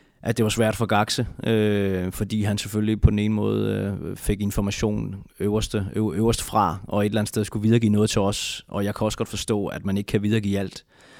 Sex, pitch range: male, 95-110 Hz